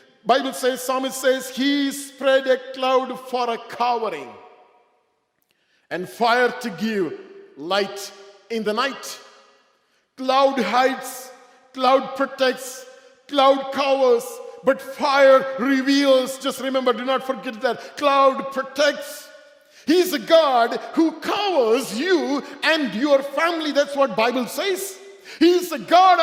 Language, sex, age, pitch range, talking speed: English, male, 50-69, 250-305 Hz, 120 wpm